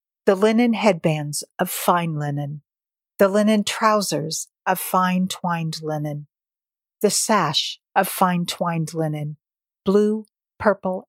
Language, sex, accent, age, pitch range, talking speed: English, female, American, 40-59, 160-205 Hz, 115 wpm